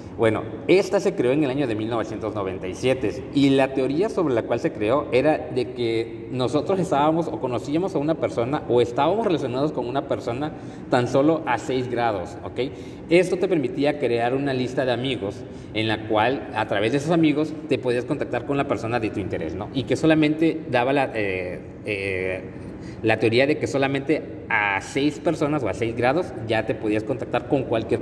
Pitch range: 110-150 Hz